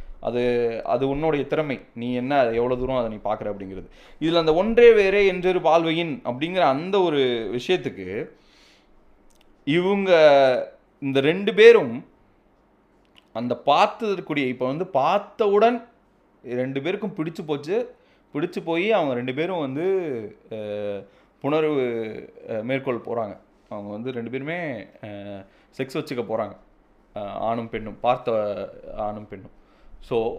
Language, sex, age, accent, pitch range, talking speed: Tamil, male, 30-49, native, 125-185 Hz, 115 wpm